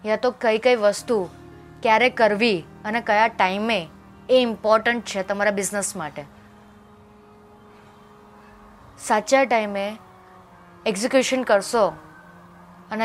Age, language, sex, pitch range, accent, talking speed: 20-39, Gujarati, female, 205-255 Hz, native, 90 wpm